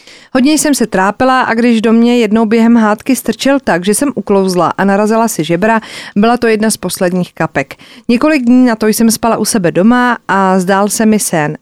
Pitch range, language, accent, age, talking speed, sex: 185-240 Hz, Czech, native, 40-59, 205 wpm, female